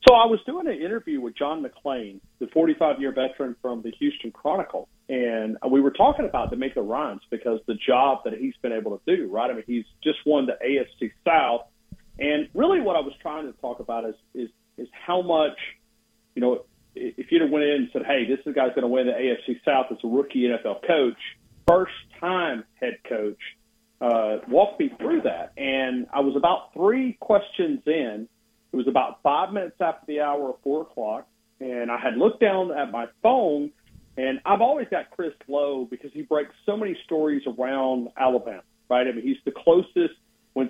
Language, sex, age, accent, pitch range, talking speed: English, male, 40-59, American, 125-190 Hz, 205 wpm